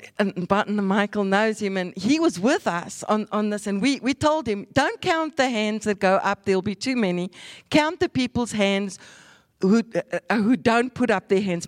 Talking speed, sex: 235 wpm, female